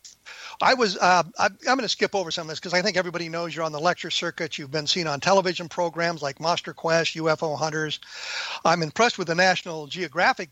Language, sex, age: English, male, 50-69